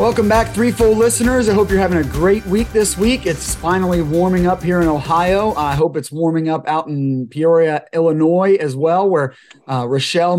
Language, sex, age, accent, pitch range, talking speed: English, male, 30-49, American, 135-180 Hz, 200 wpm